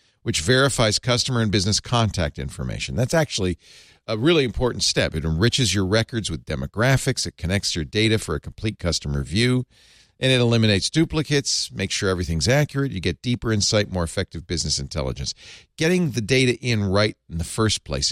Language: English